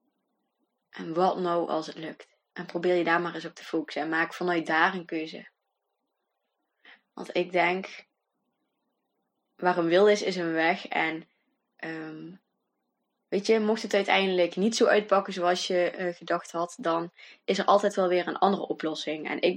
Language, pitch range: Dutch, 165-190 Hz